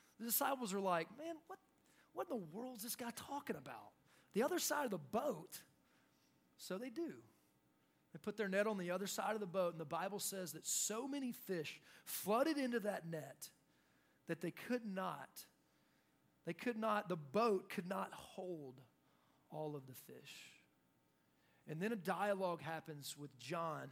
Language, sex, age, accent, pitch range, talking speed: English, male, 30-49, American, 155-230 Hz, 175 wpm